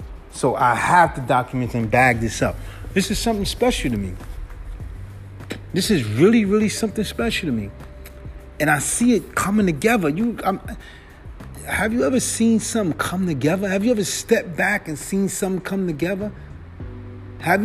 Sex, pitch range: male, 115-180 Hz